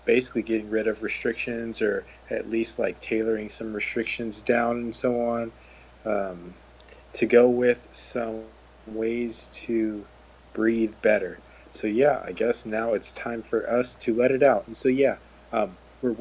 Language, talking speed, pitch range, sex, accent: English, 160 wpm, 105-125 Hz, male, American